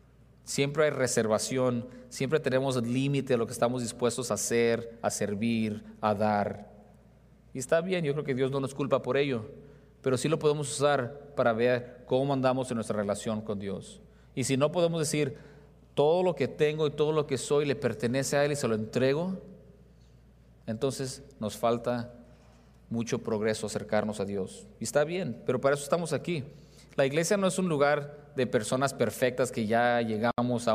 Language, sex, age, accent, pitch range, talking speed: English, male, 40-59, Mexican, 115-140 Hz, 185 wpm